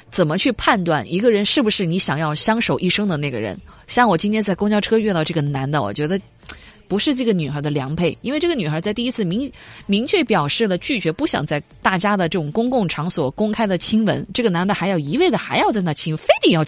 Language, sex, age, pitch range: Chinese, female, 20-39, 155-220 Hz